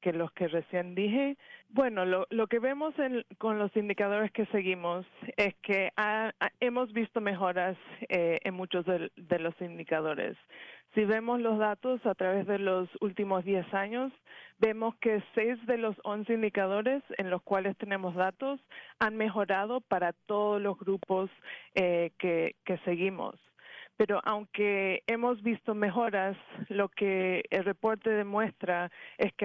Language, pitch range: English, 185-220 Hz